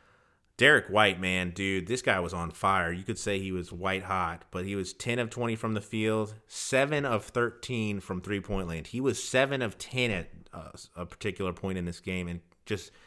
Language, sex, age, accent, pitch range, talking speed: English, male, 30-49, American, 95-110 Hz, 210 wpm